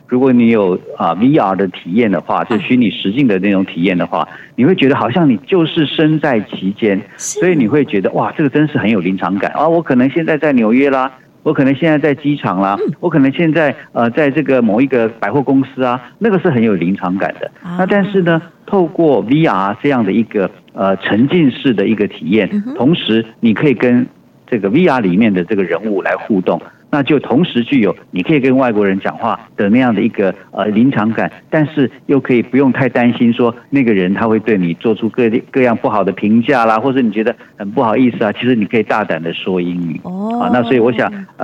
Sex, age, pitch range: male, 50-69, 105-150 Hz